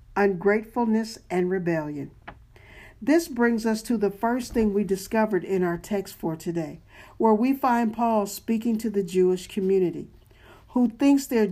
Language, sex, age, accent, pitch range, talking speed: English, male, 50-69, American, 180-225 Hz, 150 wpm